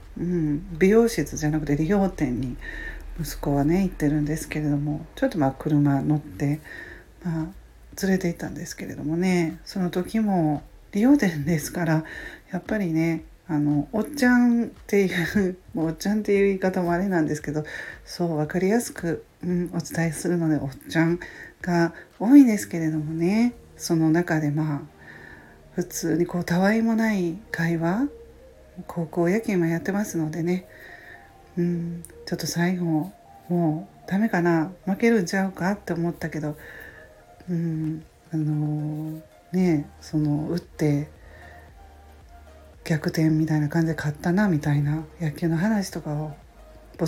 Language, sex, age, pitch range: Japanese, female, 40-59, 155-190 Hz